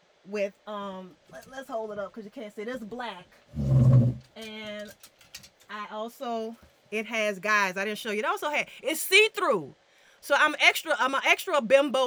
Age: 30-49